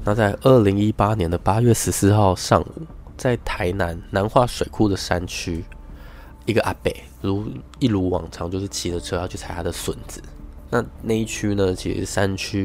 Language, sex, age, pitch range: Chinese, male, 20-39, 85-110 Hz